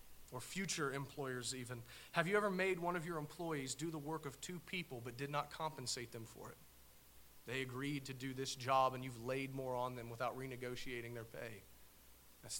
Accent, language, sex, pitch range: American, English, male, 120-165 Hz